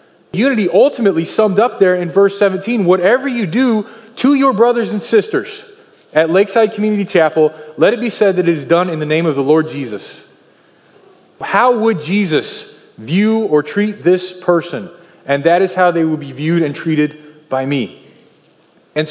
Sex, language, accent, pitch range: male, English, American, 170-225 Hz